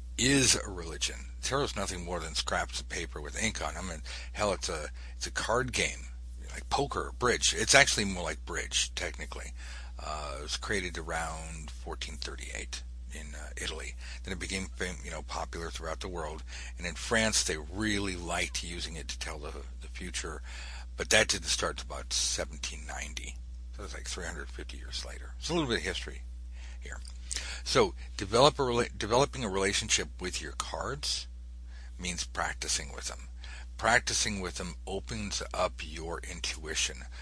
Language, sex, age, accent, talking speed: English, male, 60-79, American, 170 wpm